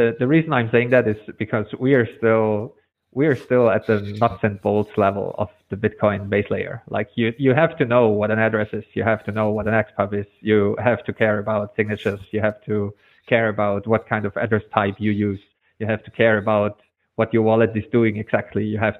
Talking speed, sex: 230 wpm, male